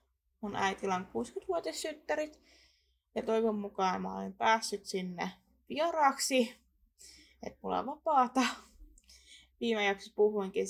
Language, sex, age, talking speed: Finnish, female, 20-39, 100 wpm